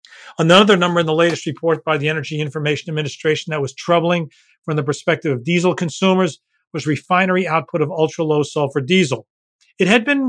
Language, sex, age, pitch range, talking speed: English, male, 40-59, 150-185 Hz, 175 wpm